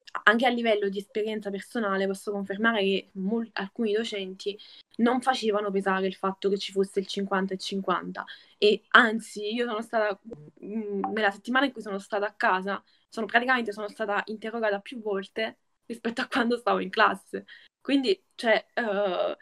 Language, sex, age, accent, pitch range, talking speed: Italian, female, 10-29, native, 195-240 Hz, 165 wpm